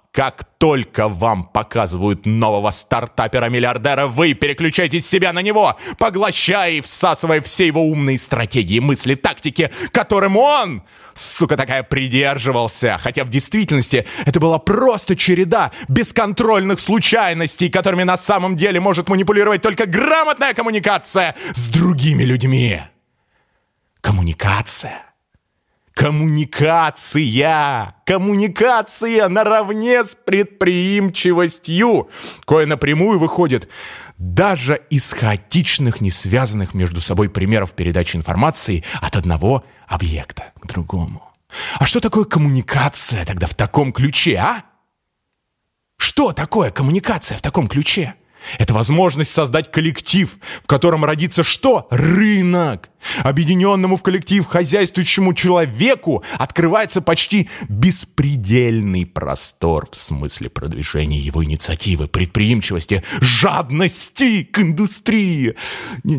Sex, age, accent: male, 20-39, native